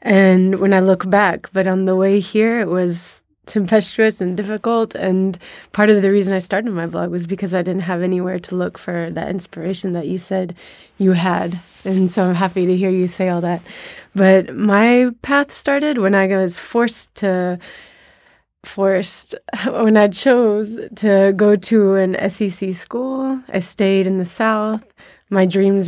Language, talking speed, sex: English, 175 wpm, female